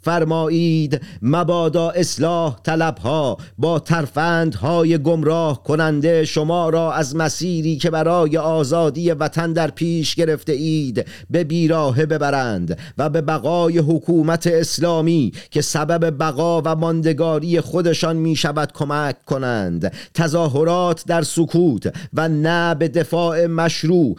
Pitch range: 155-170 Hz